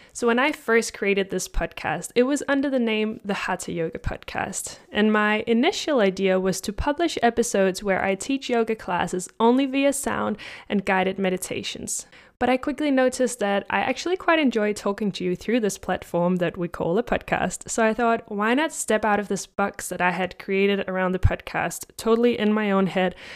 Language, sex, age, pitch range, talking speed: English, female, 10-29, 190-240 Hz, 200 wpm